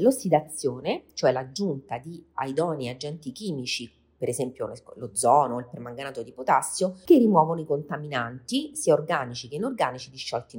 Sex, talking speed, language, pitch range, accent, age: female, 130 wpm, Italian, 120-165 Hz, native, 40-59